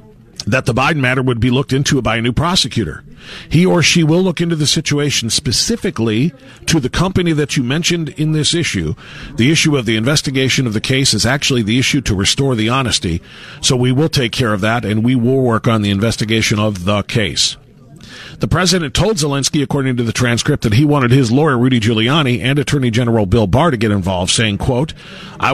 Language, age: English, 40-59